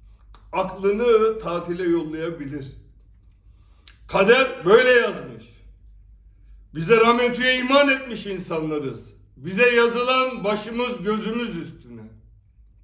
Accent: native